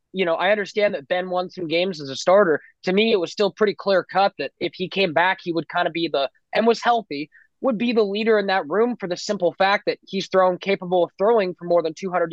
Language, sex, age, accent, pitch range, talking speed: English, male, 20-39, American, 170-210 Hz, 270 wpm